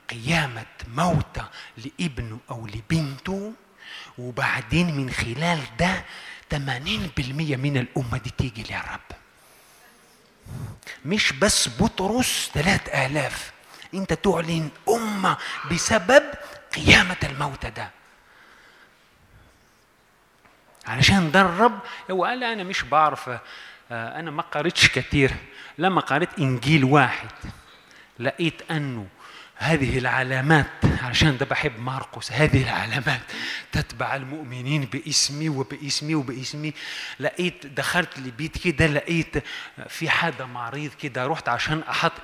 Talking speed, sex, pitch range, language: 95 wpm, male, 135-185 Hz, Arabic